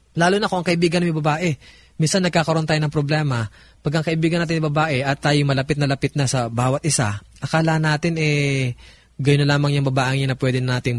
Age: 20-39